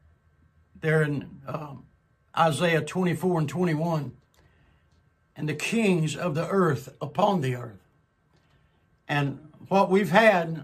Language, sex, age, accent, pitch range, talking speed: English, male, 60-79, American, 130-180 Hz, 115 wpm